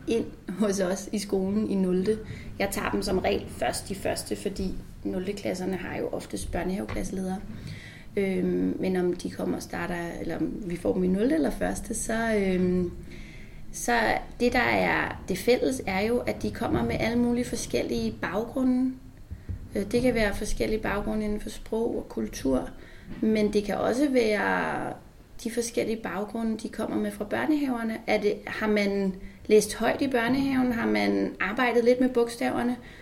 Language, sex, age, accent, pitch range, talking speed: Danish, female, 30-49, native, 195-250 Hz, 165 wpm